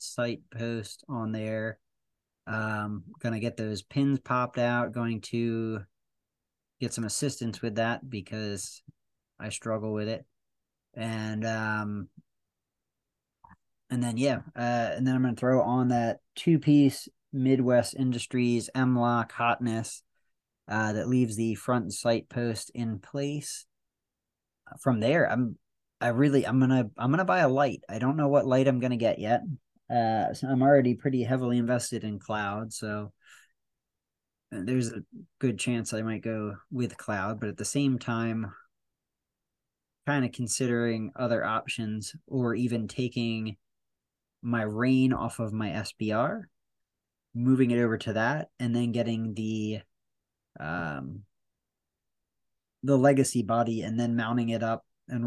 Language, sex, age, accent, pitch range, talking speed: English, male, 30-49, American, 110-125 Hz, 140 wpm